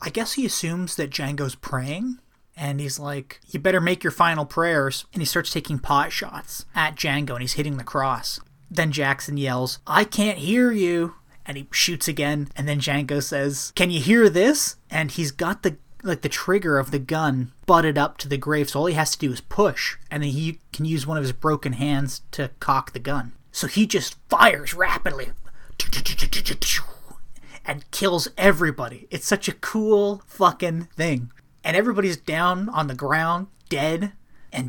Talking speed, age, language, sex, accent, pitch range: 185 wpm, 30-49, English, male, American, 140-170 Hz